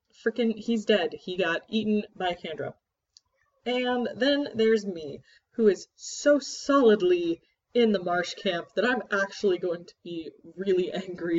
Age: 20-39